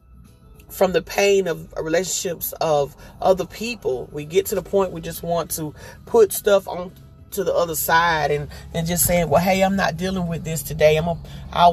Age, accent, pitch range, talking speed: 30-49, American, 160-195 Hz, 200 wpm